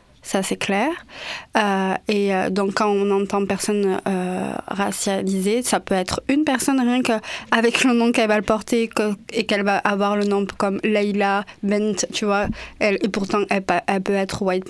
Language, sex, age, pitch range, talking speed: French, female, 20-39, 195-215 Hz, 185 wpm